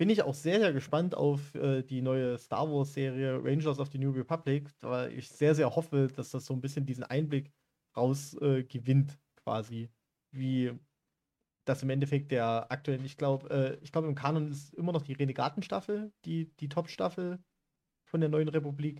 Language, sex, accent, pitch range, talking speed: German, male, German, 135-160 Hz, 175 wpm